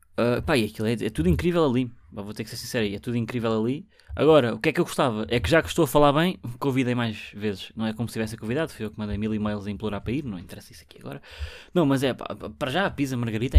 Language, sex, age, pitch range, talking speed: Portuguese, male, 20-39, 110-150 Hz, 305 wpm